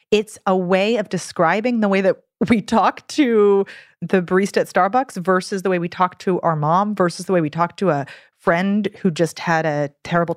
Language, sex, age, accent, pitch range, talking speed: English, female, 30-49, American, 160-210 Hz, 210 wpm